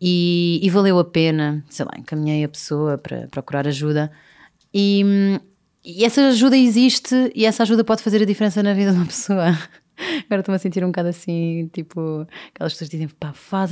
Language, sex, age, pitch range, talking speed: Portuguese, female, 30-49, 170-235 Hz, 185 wpm